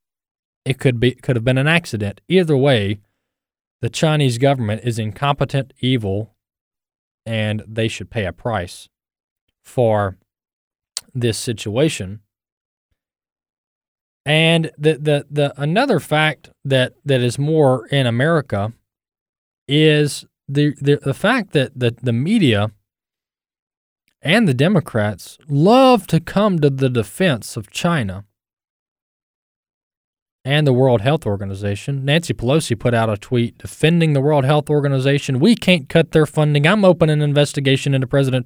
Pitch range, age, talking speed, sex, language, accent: 115-155 Hz, 20-39, 130 wpm, male, English, American